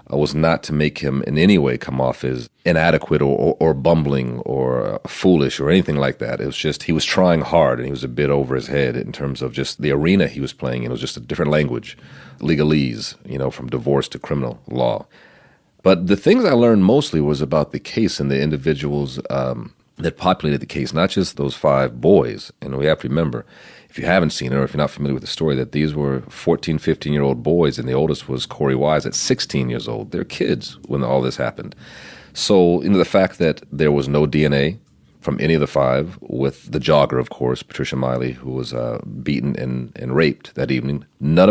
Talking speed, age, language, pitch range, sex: 220 wpm, 40-59, English, 65-75 Hz, male